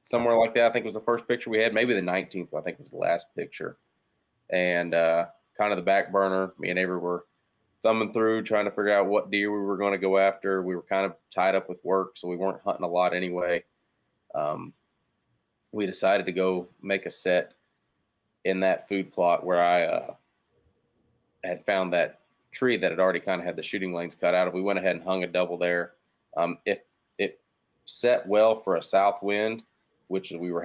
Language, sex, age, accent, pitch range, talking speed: English, male, 30-49, American, 90-100 Hz, 215 wpm